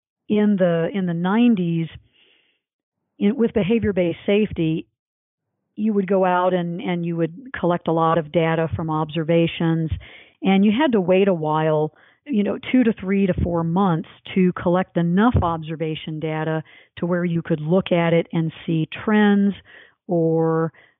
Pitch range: 165-190 Hz